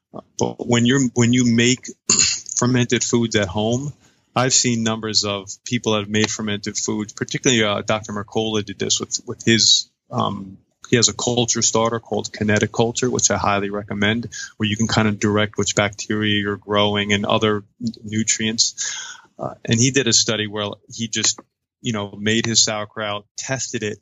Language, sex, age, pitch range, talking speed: English, male, 20-39, 105-120 Hz, 175 wpm